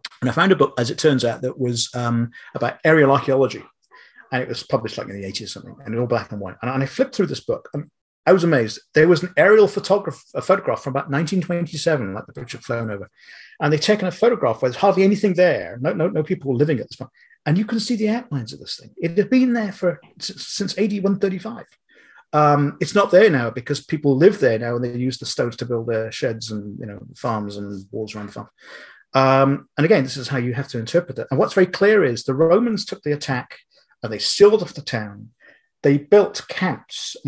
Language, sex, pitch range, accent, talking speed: English, male, 125-180 Hz, British, 245 wpm